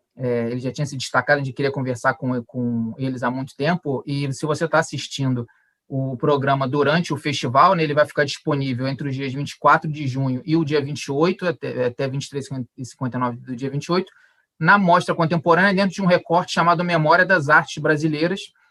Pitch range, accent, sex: 135-160 Hz, Brazilian, male